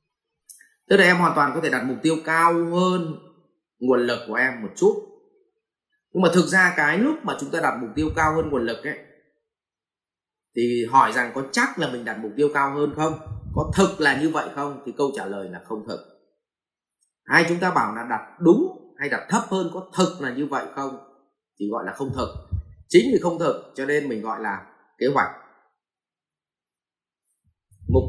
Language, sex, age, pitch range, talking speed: Vietnamese, male, 20-39, 135-200 Hz, 205 wpm